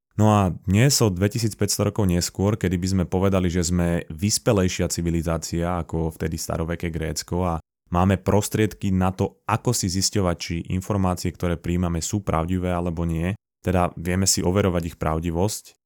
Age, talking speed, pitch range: 20-39, 155 wpm, 85-100 Hz